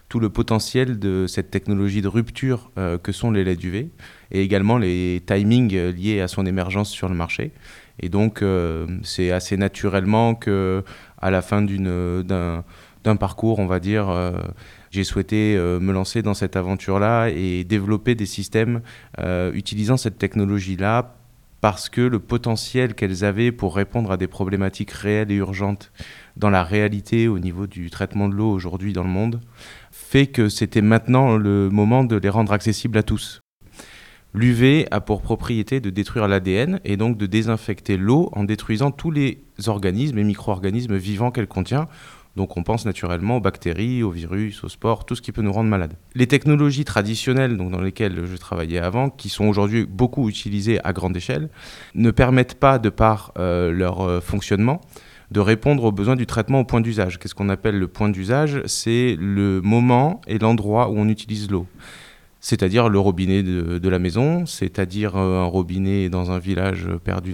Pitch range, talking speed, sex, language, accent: 95-115 Hz, 180 wpm, male, French, French